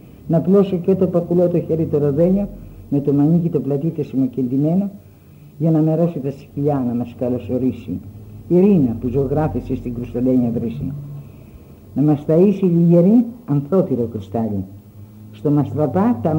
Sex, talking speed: female, 145 wpm